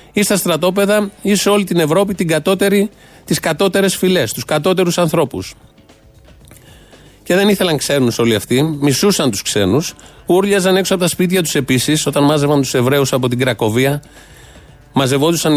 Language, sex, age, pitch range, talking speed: Greek, male, 30-49, 130-170 Hz, 145 wpm